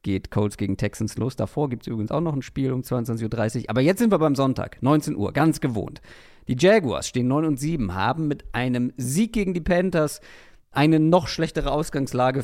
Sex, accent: male, German